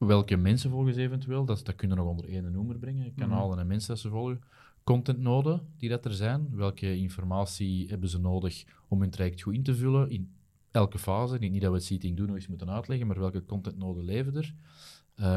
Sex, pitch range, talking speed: male, 90-115 Hz, 215 wpm